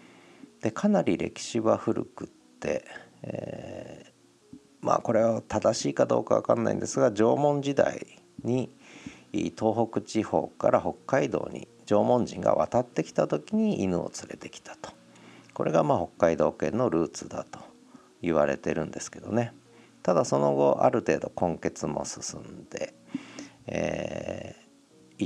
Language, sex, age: Japanese, male, 50-69